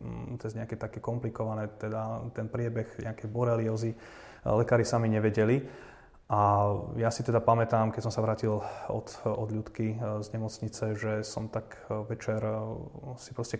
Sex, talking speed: male, 145 wpm